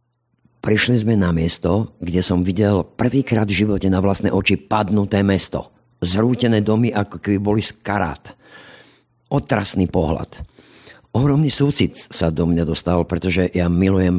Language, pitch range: Slovak, 85-110 Hz